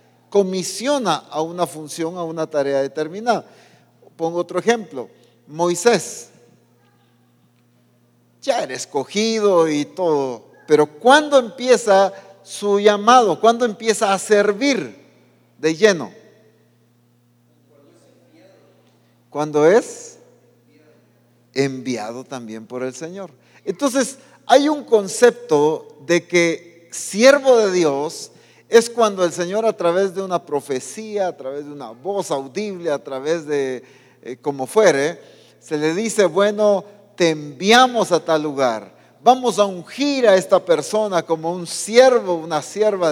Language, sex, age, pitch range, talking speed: English, male, 50-69, 145-215 Hz, 120 wpm